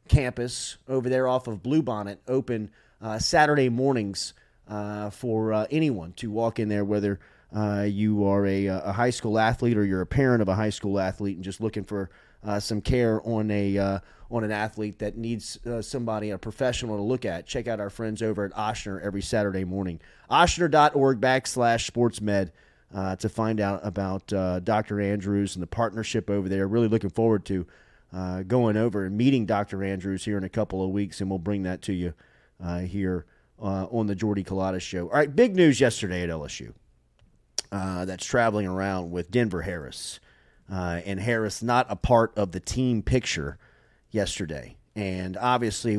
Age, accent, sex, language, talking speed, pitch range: 30-49, American, male, English, 185 wpm, 100-120 Hz